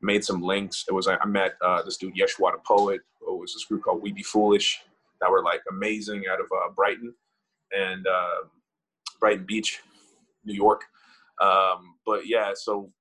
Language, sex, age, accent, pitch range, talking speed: English, male, 20-39, American, 100-130 Hz, 185 wpm